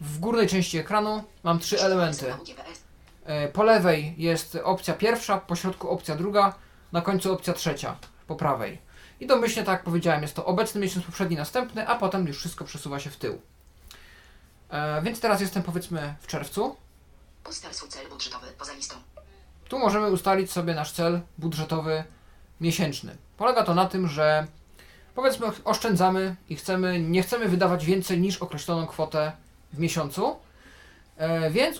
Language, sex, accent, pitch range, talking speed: Polish, male, native, 155-190 Hz, 140 wpm